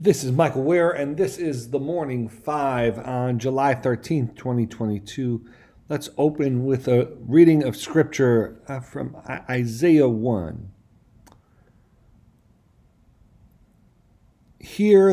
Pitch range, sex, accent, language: 110-135 Hz, male, American, English